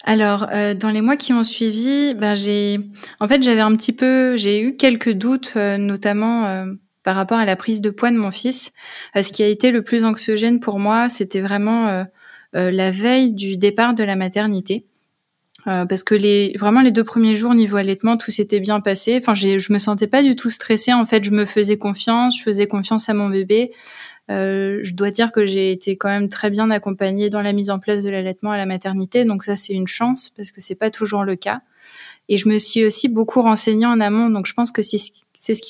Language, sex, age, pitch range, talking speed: French, female, 20-39, 200-230 Hz, 220 wpm